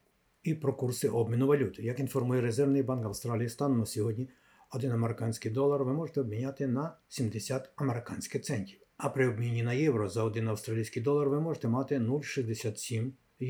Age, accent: 50-69, native